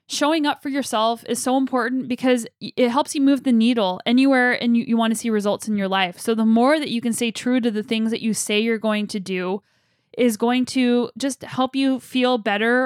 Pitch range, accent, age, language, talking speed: 215-255 Hz, American, 10-29, English, 240 wpm